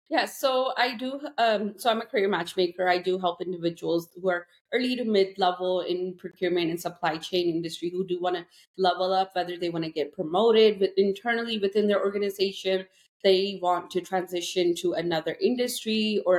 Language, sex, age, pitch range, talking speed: English, female, 30-49, 175-195 Hz, 185 wpm